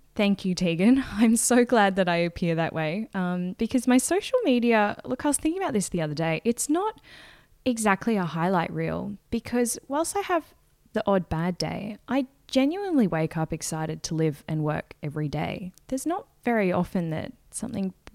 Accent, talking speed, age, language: Australian, 185 wpm, 10-29, English